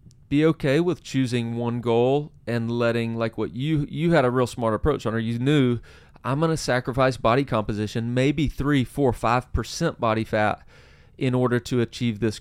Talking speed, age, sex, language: 185 wpm, 30-49, male, English